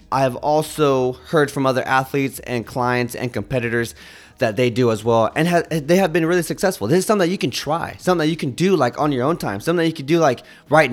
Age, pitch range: 20-39, 125-160 Hz